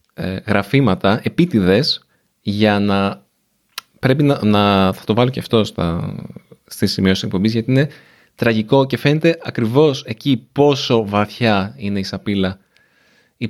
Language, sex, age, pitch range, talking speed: Greek, male, 30-49, 95-120 Hz, 135 wpm